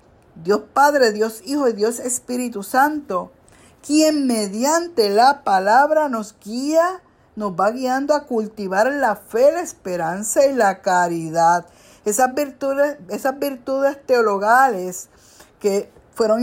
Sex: female